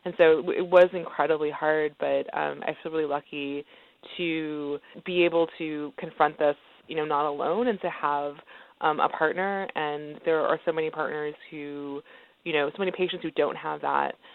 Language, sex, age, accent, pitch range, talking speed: English, female, 20-39, American, 145-175 Hz, 185 wpm